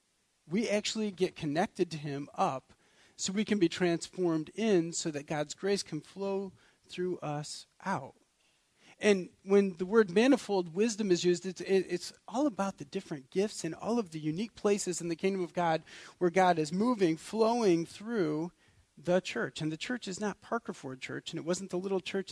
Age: 40-59